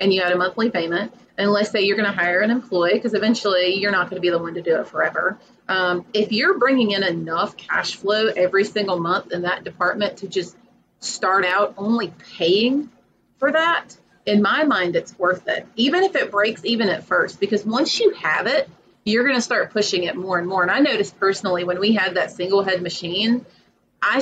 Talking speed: 220 wpm